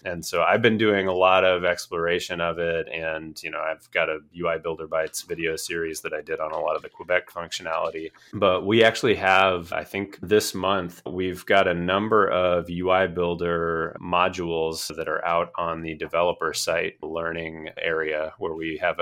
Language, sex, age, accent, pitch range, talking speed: English, male, 30-49, American, 85-100 Hz, 190 wpm